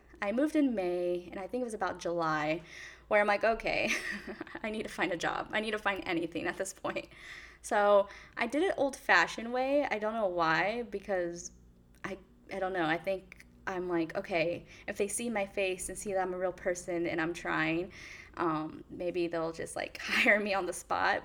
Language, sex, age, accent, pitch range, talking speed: English, female, 10-29, American, 170-210 Hz, 210 wpm